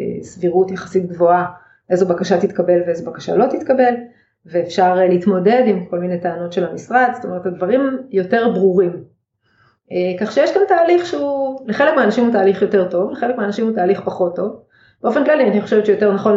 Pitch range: 180-215 Hz